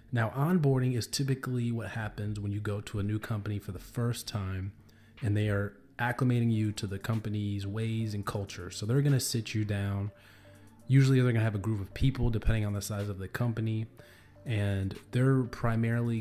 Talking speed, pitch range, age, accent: 195 wpm, 100-115 Hz, 20-39, American